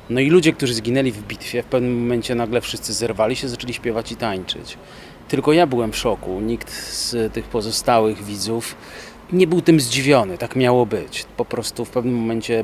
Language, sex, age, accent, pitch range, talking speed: Polish, male, 30-49, native, 110-125 Hz, 190 wpm